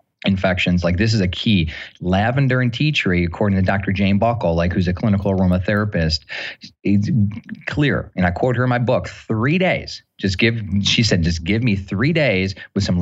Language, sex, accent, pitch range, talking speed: English, male, American, 95-120 Hz, 195 wpm